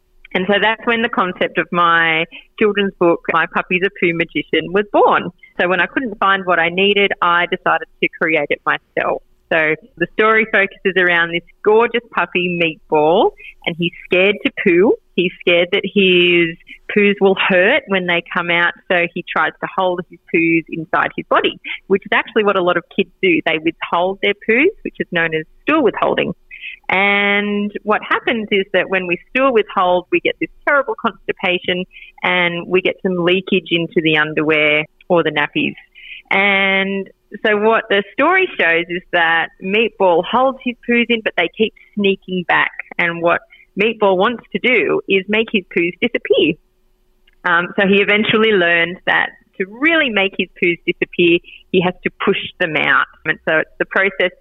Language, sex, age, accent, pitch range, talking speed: English, female, 30-49, Australian, 170-215 Hz, 180 wpm